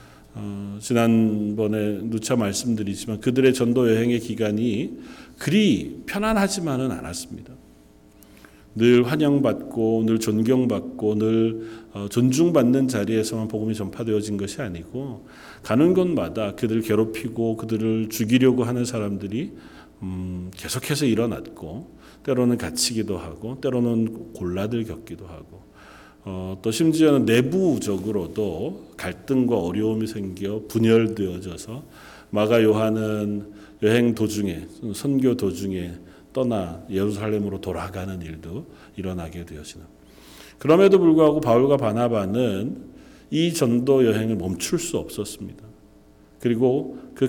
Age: 40-59